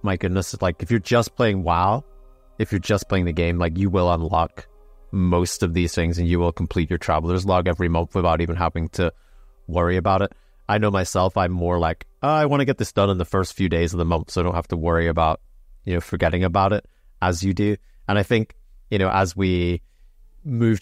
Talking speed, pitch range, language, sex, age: 235 wpm, 90-105 Hz, English, male, 30-49